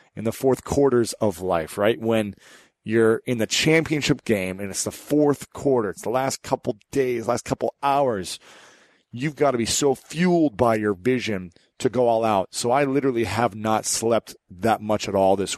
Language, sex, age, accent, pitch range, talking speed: English, male, 40-59, American, 105-125 Hz, 195 wpm